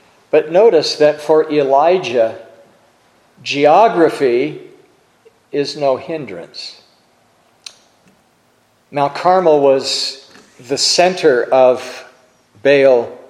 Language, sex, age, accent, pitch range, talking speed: English, male, 50-69, American, 140-190 Hz, 70 wpm